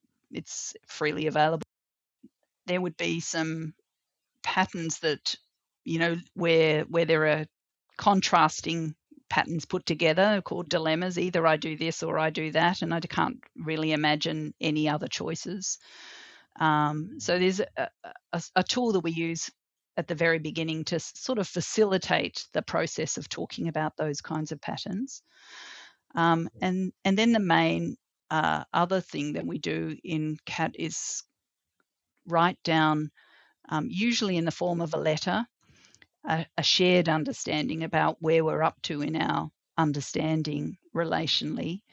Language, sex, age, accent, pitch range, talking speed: English, female, 40-59, Australian, 155-185 Hz, 145 wpm